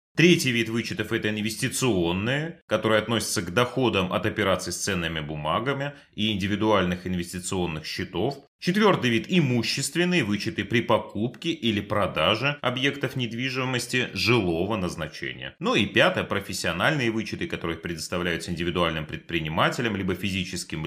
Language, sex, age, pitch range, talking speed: Russian, male, 30-49, 90-135 Hz, 120 wpm